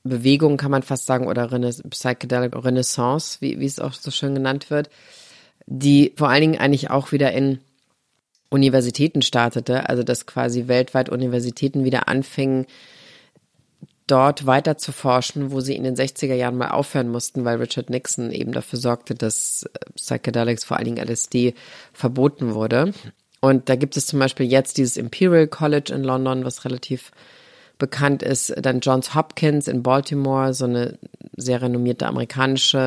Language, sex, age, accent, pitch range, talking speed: German, female, 30-49, German, 125-145 Hz, 155 wpm